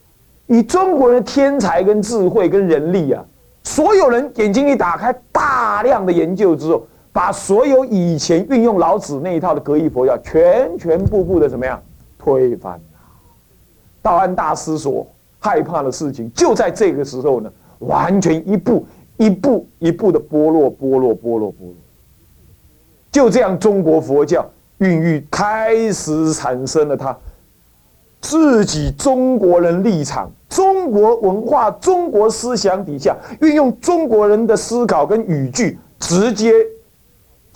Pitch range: 155-250 Hz